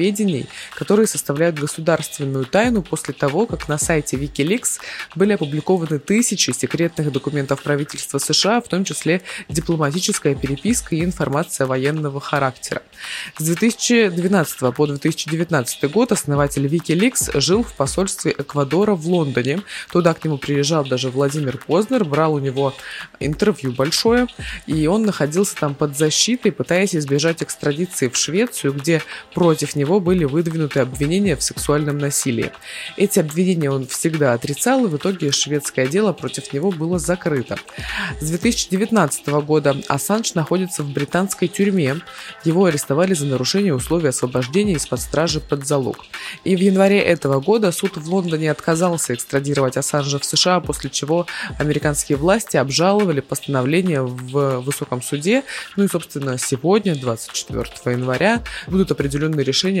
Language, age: Russian, 20-39